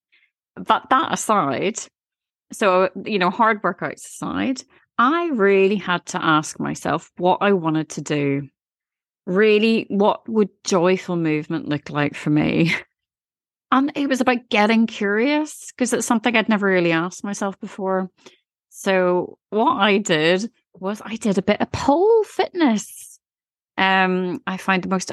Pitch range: 165-220 Hz